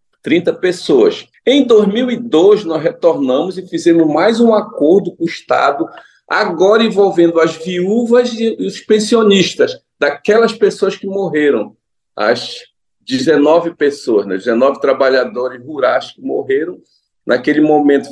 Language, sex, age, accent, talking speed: Portuguese, male, 40-59, Brazilian, 120 wpm